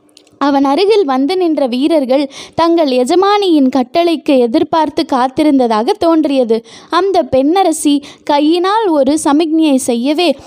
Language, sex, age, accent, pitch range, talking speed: Tamil, female, 20-39, native, 285-360 Hz, 95 wpm